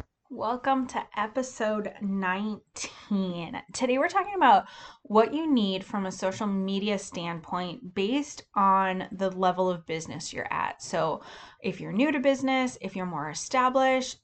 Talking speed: 145 wpm